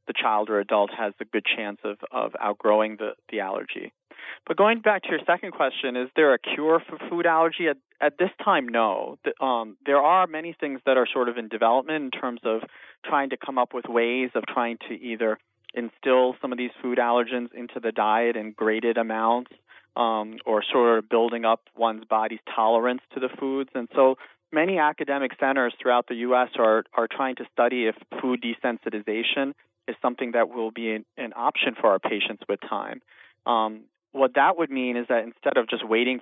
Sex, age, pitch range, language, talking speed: male, 40-59, 110-130 Hz, English, 200 wpm